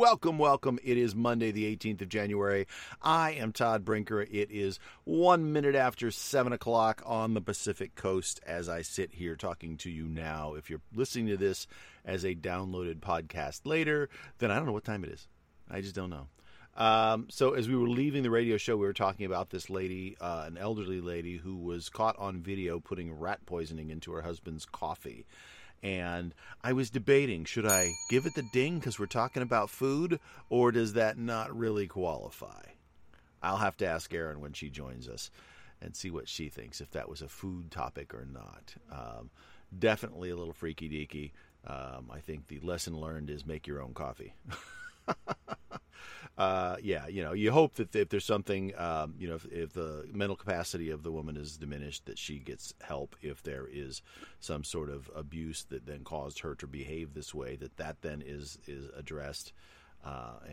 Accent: American